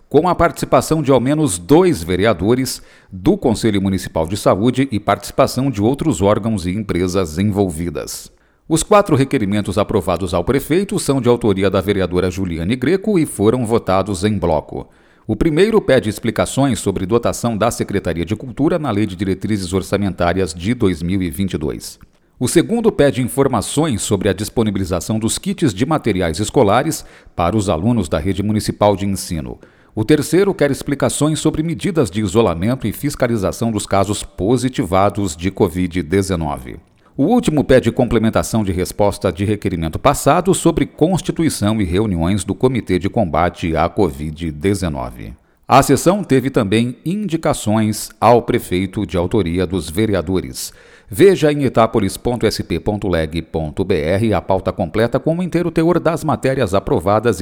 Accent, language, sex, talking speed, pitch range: Brazilian, Portuguese, male, 140 wpm, 95-135 Hz